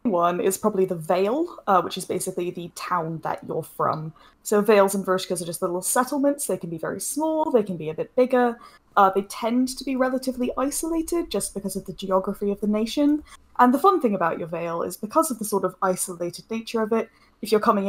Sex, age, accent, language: female, 10-29, British, English